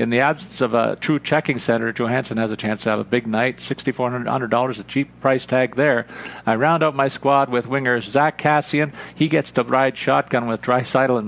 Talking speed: 215 wpm